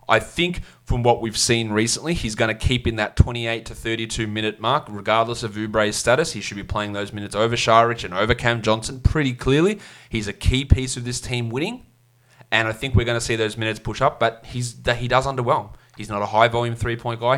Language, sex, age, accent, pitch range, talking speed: English, male, 20-39, Australian, 110-125 Hz, 230 wpm